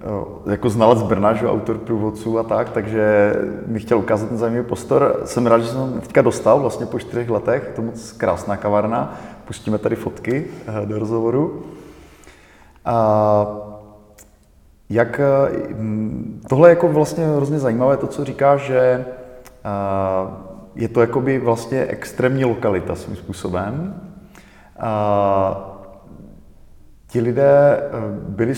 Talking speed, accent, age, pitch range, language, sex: 125 wpm, native, 30-49, 105-125 Hz, Czech, male